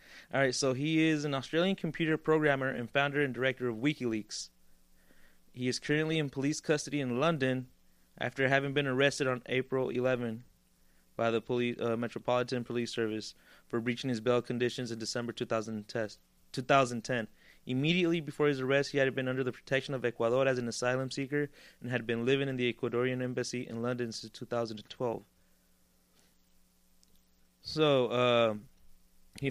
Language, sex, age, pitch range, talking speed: English, male, 20-39, 115-145 Hz, 155 wpm